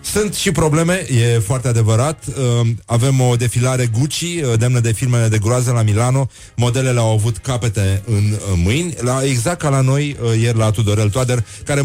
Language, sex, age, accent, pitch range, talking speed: Romanian, male, 30-49, native, 105-130 Hz, 165 wpm